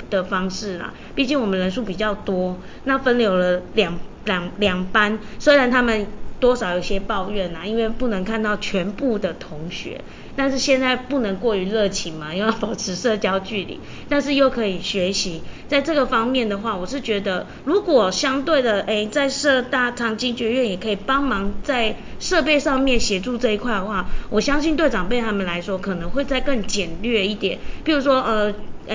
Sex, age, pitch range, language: female, 20-39, 195-250 Hz, Chinese